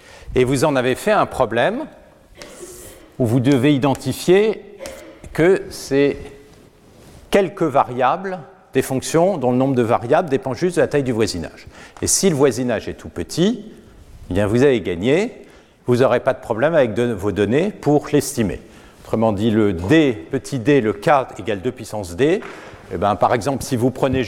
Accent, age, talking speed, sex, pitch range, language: French, 50-69, 175 wpm, male, 105-145 Hz, French